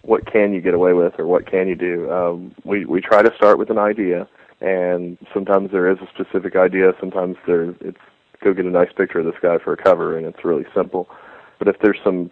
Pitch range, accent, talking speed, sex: 90-95 Hz, American, 240 wpm, male